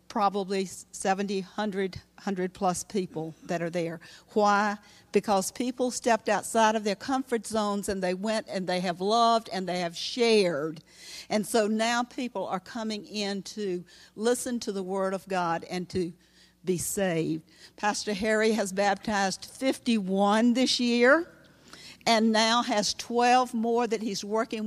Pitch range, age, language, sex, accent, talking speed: 185-225 Hz, 50-69, English, female, American, 150 wpm